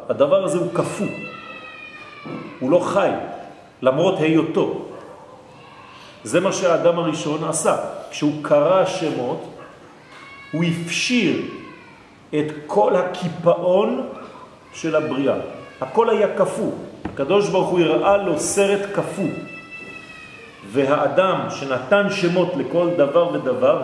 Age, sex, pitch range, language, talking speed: 40-59, male, 145-190 Hz, French, 100 wpm